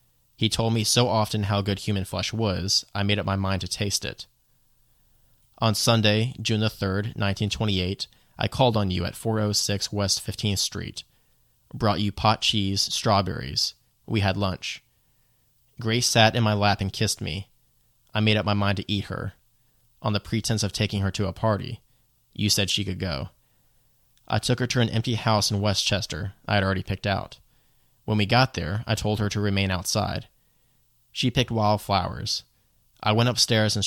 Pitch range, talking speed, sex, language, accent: 100-115 Hz, 180 wpm, male, English, American